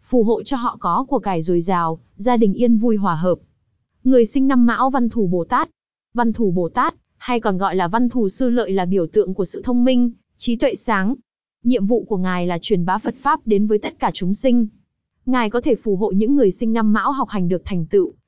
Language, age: Vietnamese, 20-39